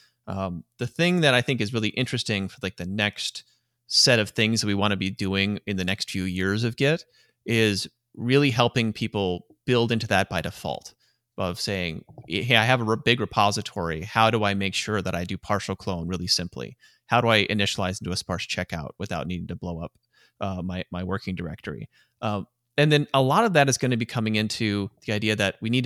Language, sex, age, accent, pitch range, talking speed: English, male, 30-49, American, 95-115 Hz, 225 wpm